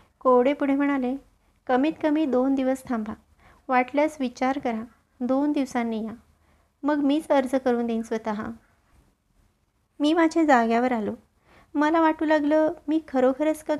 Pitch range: 235-300 Hz